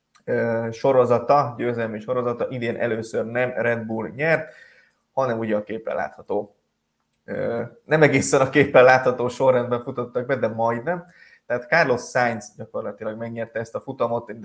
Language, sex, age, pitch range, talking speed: Hungarian, male, 20-39, 115-130 Hz, 135 wpm